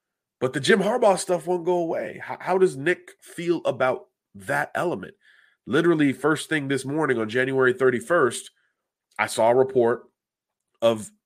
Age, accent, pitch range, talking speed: 30-49, American, 110-150 Hz, 155 wpm